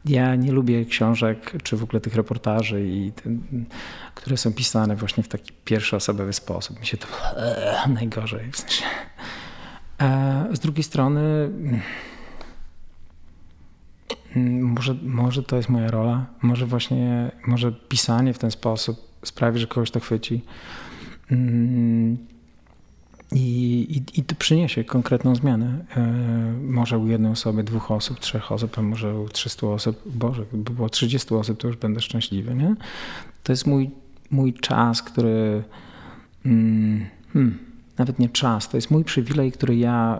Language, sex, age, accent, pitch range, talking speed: Polish, male, 40-59, native, 110-125 Hz, 140 wpm